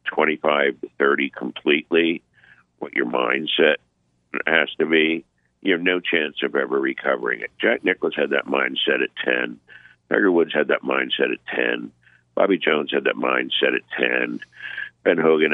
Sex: male